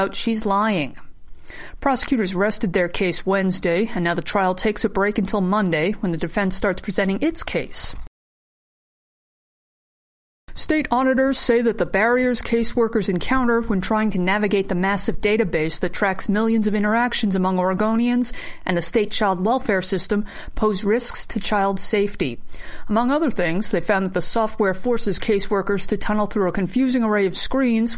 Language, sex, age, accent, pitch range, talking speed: English, female, 50-69, American, 190-230 Hz, 160 wpm